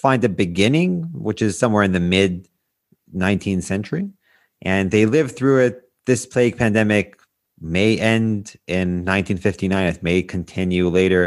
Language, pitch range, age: English, 90-120 Hz, 30-49